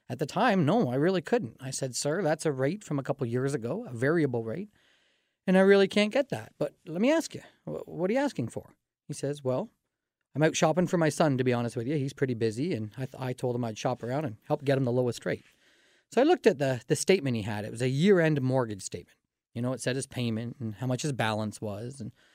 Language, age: English, 30-49